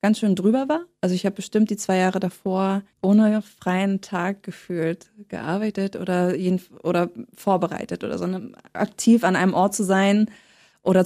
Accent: German